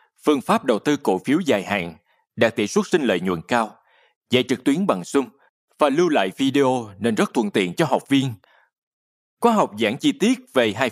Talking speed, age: 210 wpm, 20-39